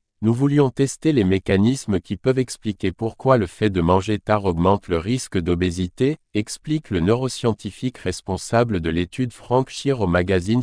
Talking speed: 170 wpm